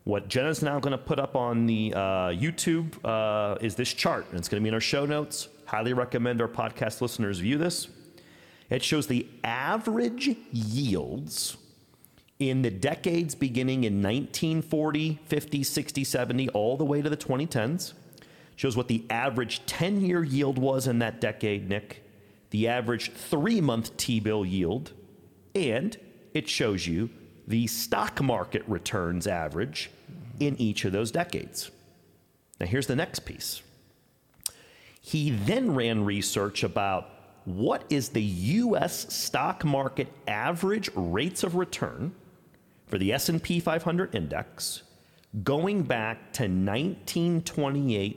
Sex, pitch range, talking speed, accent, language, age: male, 110-155 Hz, 135 wpm, American, English, 40-59